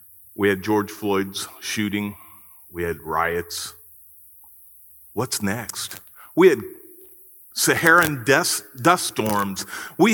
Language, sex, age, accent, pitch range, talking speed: English, male, 40-59, American, 95-155 Hz, 100 wpm